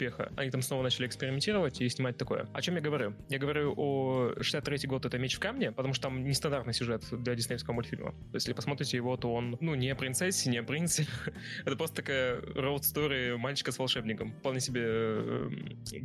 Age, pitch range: 20-39, 120-140 Hz